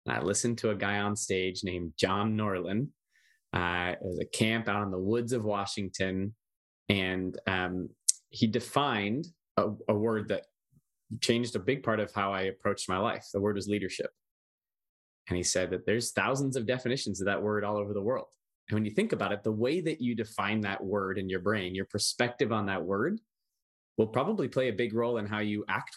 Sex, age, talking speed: male, 20-39, 205 wpm